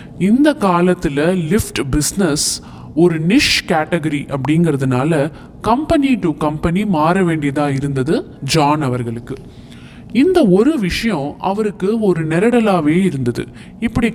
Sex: male